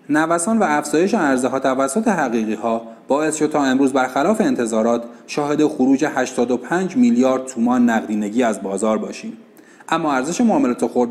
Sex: male